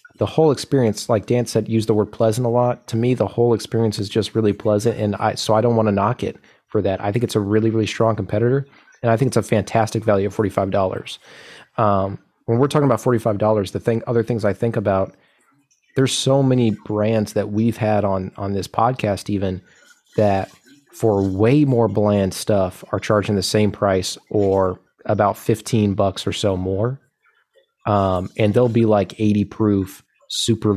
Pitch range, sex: 100-120 Hz, male